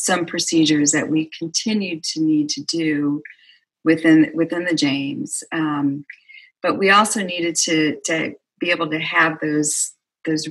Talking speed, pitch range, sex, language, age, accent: 150 wpm, 150-205 Hz, female, English, 40-59, American